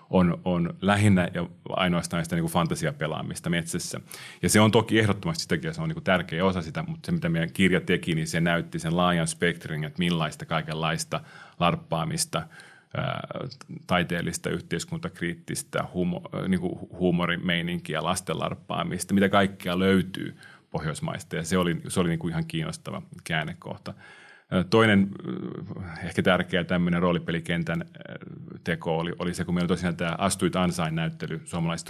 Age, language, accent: 30-49, Finnish, native